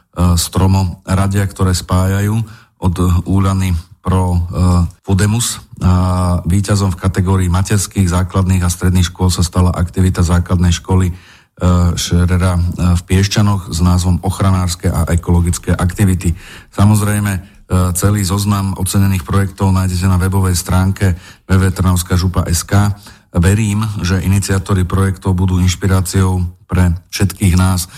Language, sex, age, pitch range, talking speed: Slovak, male, 40-59, 90-95 Hz, 110 wpm